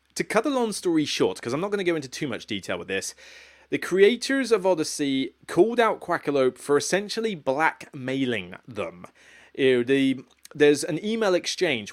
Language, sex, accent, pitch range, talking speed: English, male, British, 115-165 Hz, 170 wpm